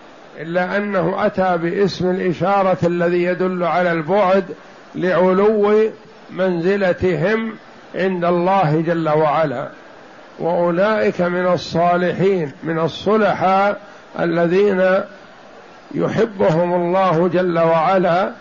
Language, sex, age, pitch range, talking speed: Arabic, male, 60-79, 175-205 Hz, 80 wpm